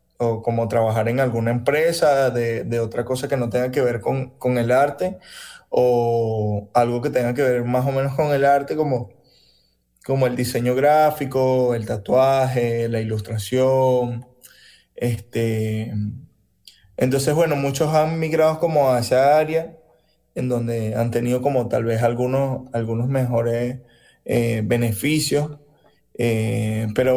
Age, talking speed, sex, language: 20-39, 140 wpm, male, Spanish